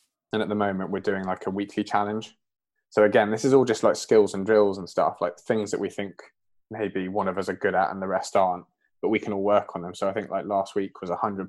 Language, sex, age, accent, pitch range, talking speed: English, male, 20-39, British, 95-105 Hz, 275 wpm